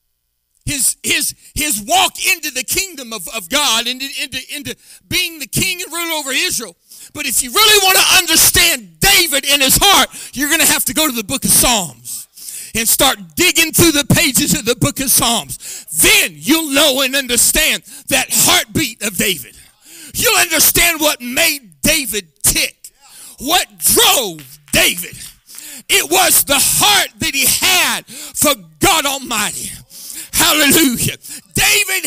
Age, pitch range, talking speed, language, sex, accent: 40-59, 240-355 Hz, 155 wpm, English, male, American